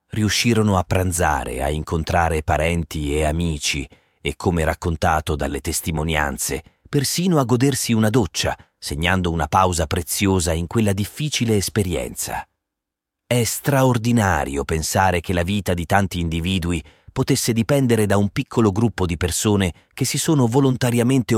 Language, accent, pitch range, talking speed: Italian, native, 85-115 Hz, 130 wpm